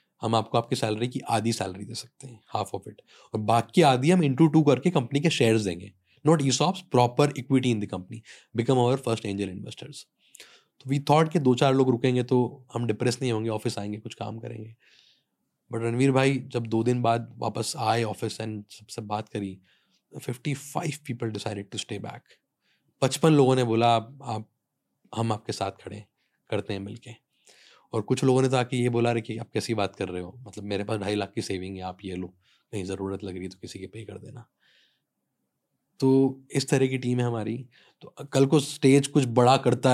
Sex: male